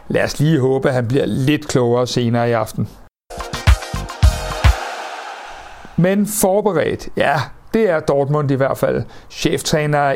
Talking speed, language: 130 wpm, Danish